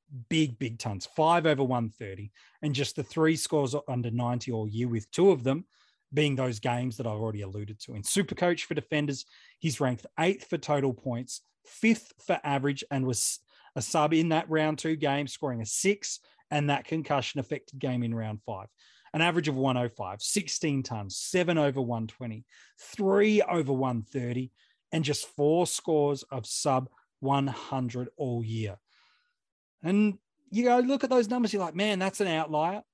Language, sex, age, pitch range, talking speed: English, male, 30-49, 130-180 Hz, 175 wpm